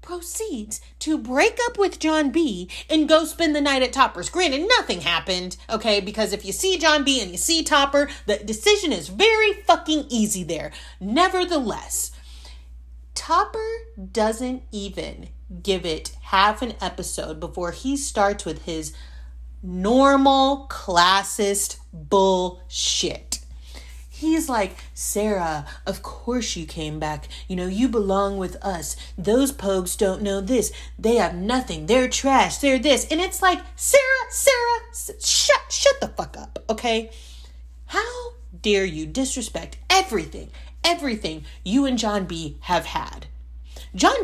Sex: female